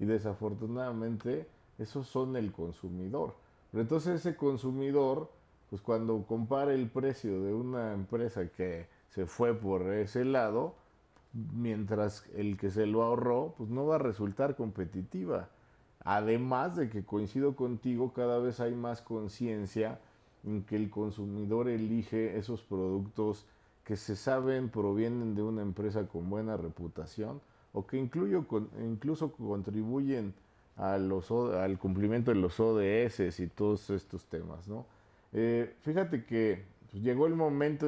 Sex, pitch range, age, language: male, 100-125 Hz, 50-69, Spanish